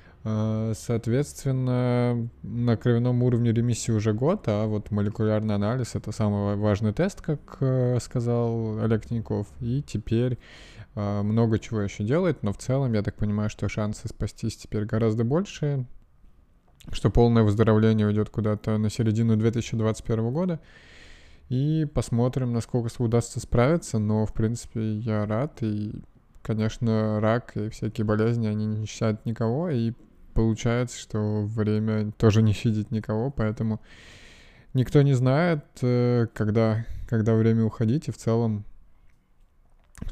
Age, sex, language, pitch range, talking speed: 20-39, male, Russian, 105-120 Hz, 130 wpm